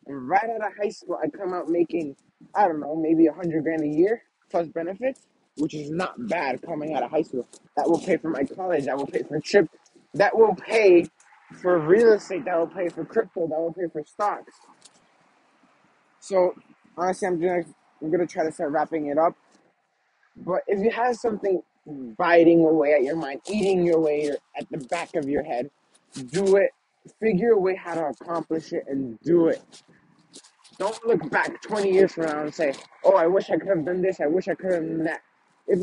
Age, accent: 20-39, American